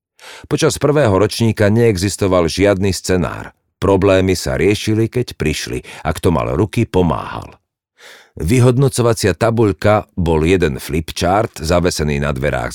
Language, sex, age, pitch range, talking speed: Slovak, male, 50-69, 80-105 Hz, 115 wpm